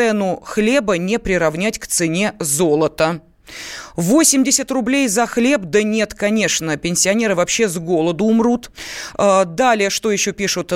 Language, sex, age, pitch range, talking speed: Russian, female, 30-49, 180-235 Hz, 130 wpm